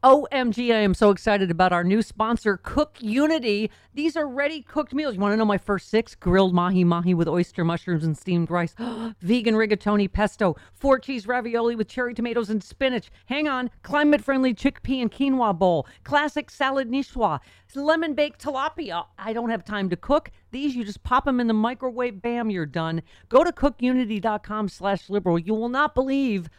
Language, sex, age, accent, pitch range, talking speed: English, female, 40-59, American, 185-260 Hz, 175 wpm